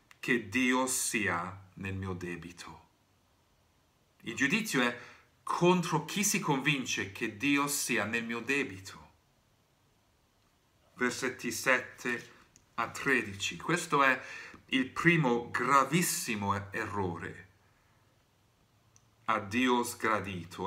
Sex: male